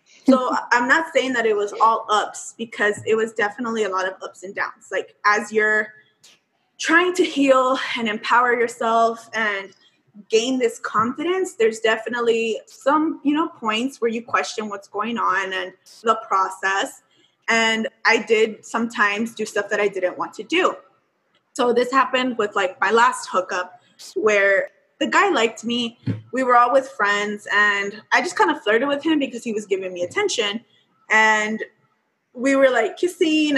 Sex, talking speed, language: female, 170 wpm, English